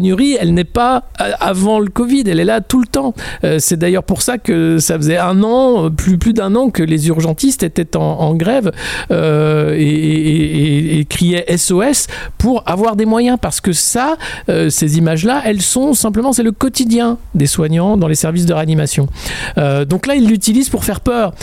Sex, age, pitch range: male, 50-69, 160-235 Hz